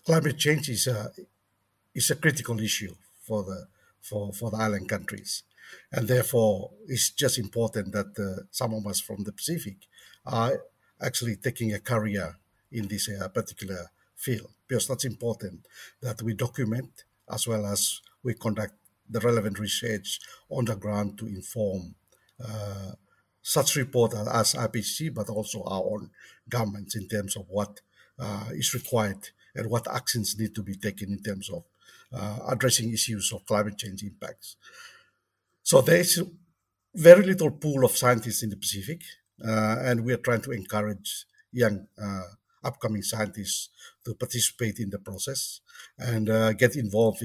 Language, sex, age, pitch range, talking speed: English, male, 50-69, 105-125 Hz, 155 wpm